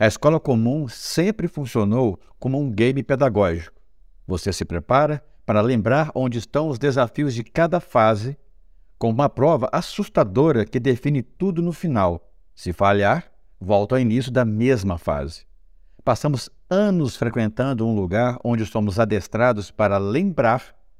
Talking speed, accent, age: 135 wpm, Brazilian, 60-79